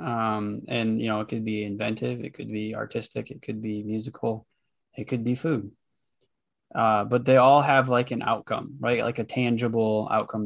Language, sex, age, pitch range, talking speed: English, male, 20-39, 110-130 Hz, 190 wpm